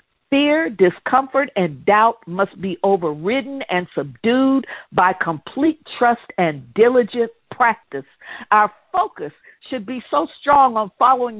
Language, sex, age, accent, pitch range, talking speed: English, female, 50-69, American, 190-265 Hz, 120 wpm